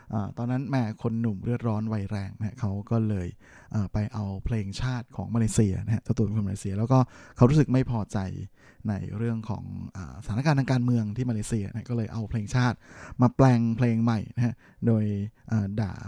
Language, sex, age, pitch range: Thai, male, 20-39, 105-125 Hz